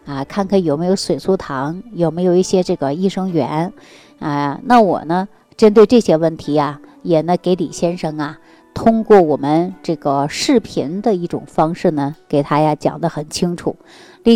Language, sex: Chinese, female